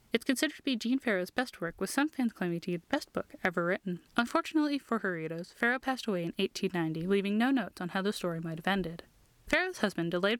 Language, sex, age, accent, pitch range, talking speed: English, female, 10-29, American, 175-240 Hz, 230 wpm